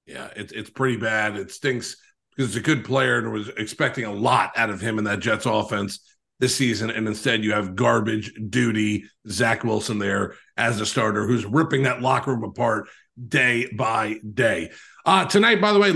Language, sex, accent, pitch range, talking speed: English, male, American, 115-160 Hz, 195 wpm